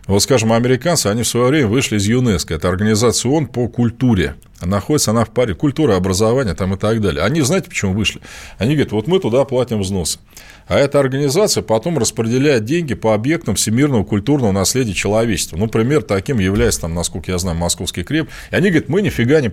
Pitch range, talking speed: 100-140 Hz, 190 wpm